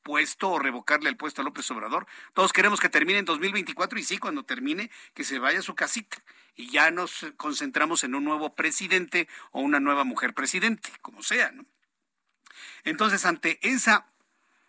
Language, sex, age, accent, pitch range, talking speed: Spanish, male, 50-69, Mexican, 165-265 Hz, 175 wpm